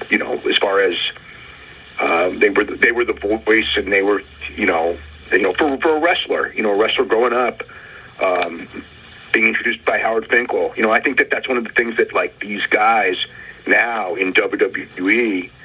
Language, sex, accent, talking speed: English, male, American, 205 wpm